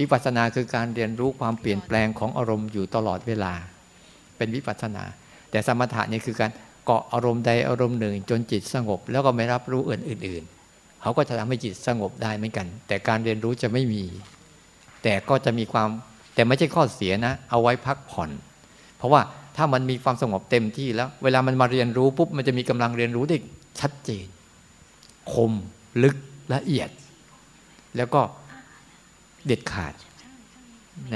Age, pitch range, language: 60-79, 110-135 Hz, Thai